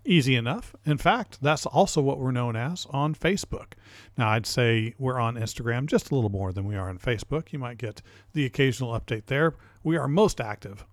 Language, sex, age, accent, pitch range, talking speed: English, male, 50-69, American, 105-140 Hz, 210 wpm